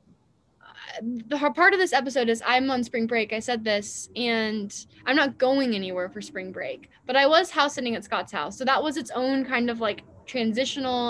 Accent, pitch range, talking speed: American, 215-260 Hz, 205 wpm